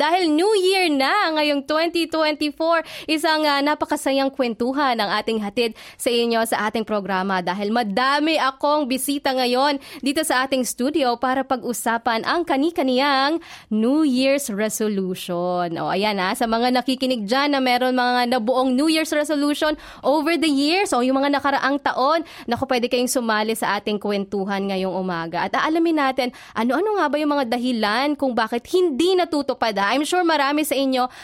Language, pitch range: Filipino, 230-295 Hz